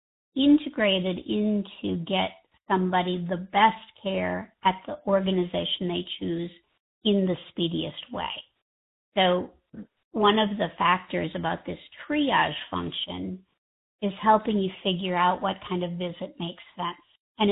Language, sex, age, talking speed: English, female, 50-69, 125 wpm